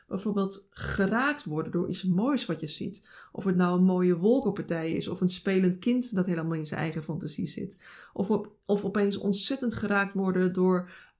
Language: Dutch